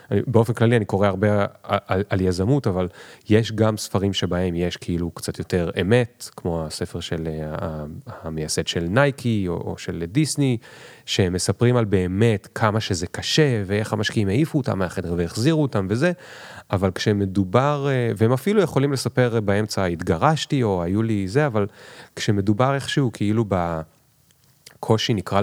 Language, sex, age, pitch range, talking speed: Hebrew, male, 30-49, 90-120 Hz, 140 wpm